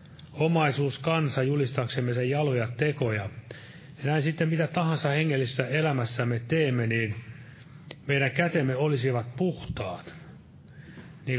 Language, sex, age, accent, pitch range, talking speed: Finnish, male, 30-49, native, 125-150 Hz, 105 wpm